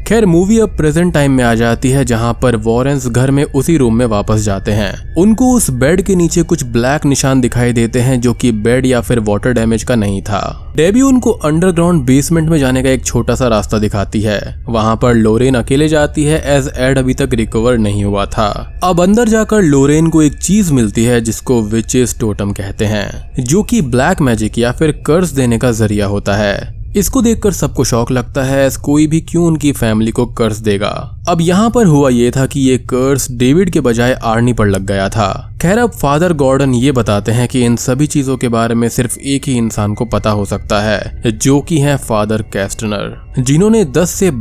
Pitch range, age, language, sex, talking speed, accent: 115-150 Hz, 20-39, Hindi, male, 210 wpm, native